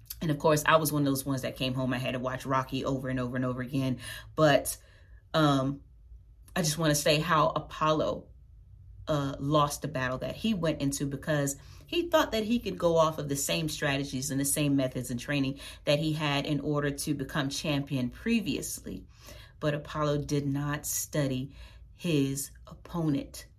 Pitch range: 135-160 Hz